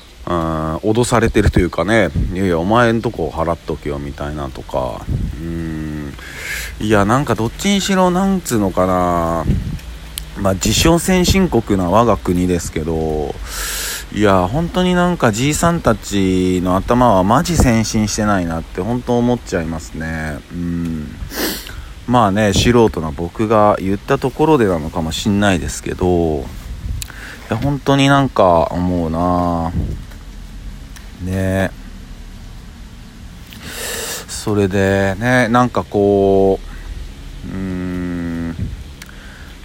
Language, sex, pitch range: Japanese, male, 80-110 Hz